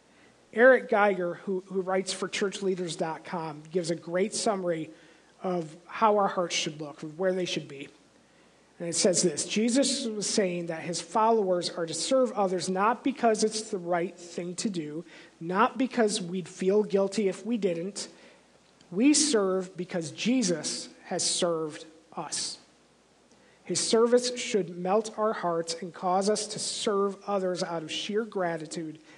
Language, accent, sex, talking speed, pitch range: English, American, male, 150 wpm, 170-215 Hz